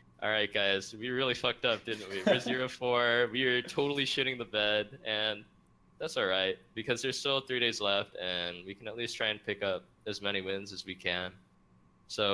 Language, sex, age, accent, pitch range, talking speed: English, male, 20-39, American, 95-120 Hz, 205 wpm